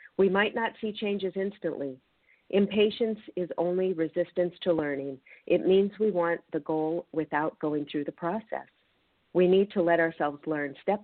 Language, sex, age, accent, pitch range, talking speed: English, female, 50-69, American, 160-195 Hz, 165 wpm